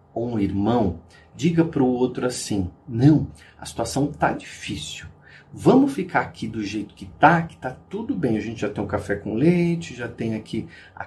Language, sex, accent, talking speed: Portuguese, male, Brazilian, 200 wpm